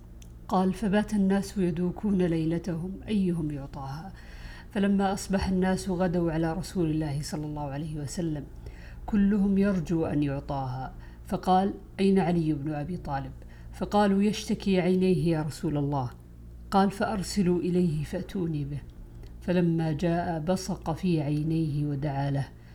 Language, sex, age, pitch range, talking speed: Arabic, female, 50-69, 150-190 Hz, 120 wpm